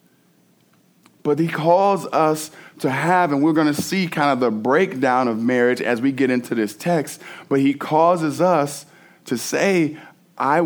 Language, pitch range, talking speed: English, 120-150 Hz, 170 wpm